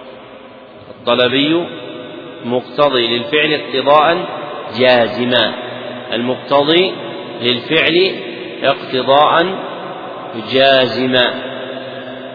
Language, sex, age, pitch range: Arabic, male, 40-59, 125-145 Hz